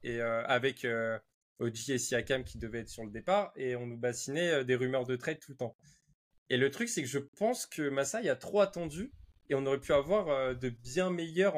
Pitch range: 125-165 Hz